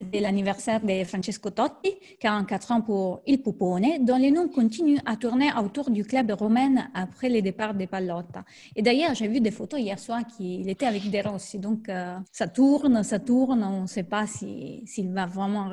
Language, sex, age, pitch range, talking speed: French, female, 30-49, 190-235 Hz, 205 wpm